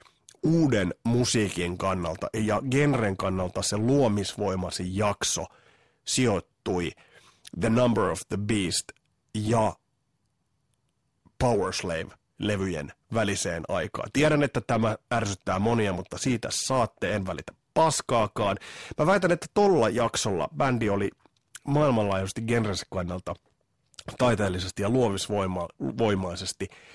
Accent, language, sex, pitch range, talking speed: native, Finnish, male, 95-120 Hz, 95 wpm